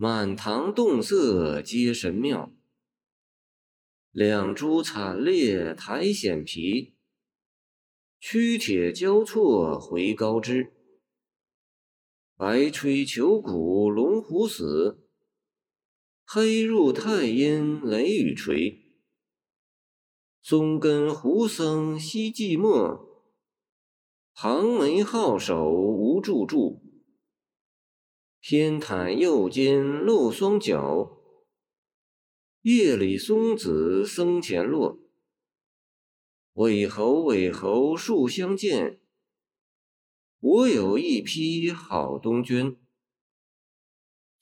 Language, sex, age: Chinese, male, 50-69